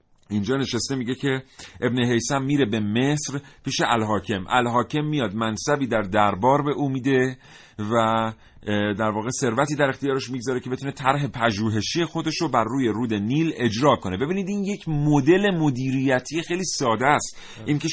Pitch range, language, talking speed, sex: 105-145 Hz, Persian, 155 wpm, male